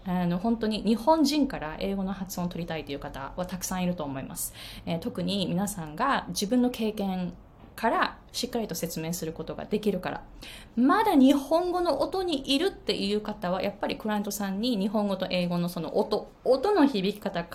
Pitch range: 180-275 Hz